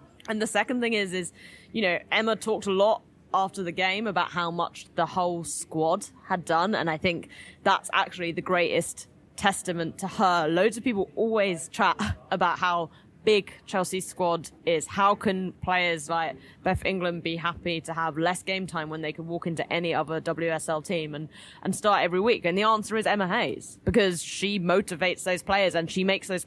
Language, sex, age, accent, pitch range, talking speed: English, female, 20-39, British, 170-205 Hz, 195 wpm